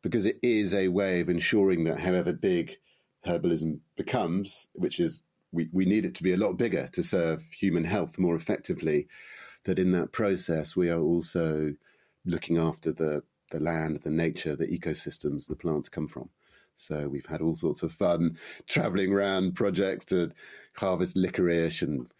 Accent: British